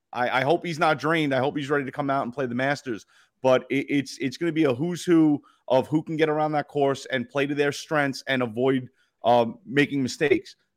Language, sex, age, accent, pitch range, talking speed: English, male, 30-49, American, 130-150 Hz, 245 wpm